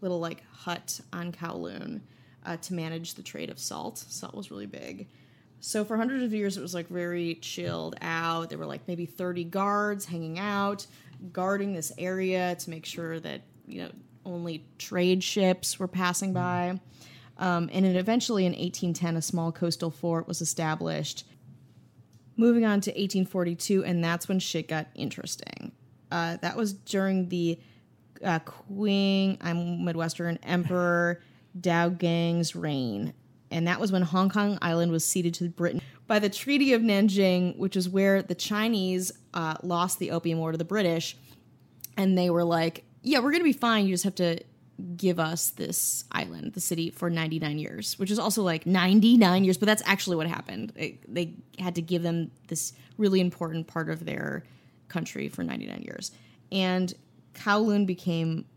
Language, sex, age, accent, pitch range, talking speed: English, female, 30-49, American, 165-190 Hz, 170 wpm